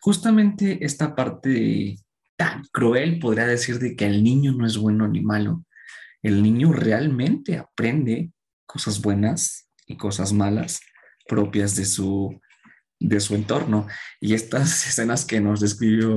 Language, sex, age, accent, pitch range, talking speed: Spanish, male, 20-39, Mexican, 105-120 Hz, 135 wpm